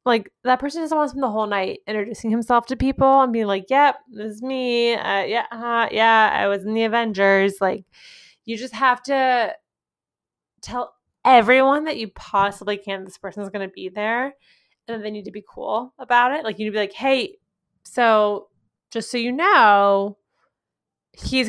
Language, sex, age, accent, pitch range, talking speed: English, female, 20-39, American, 200-245 Hz, 195 wpm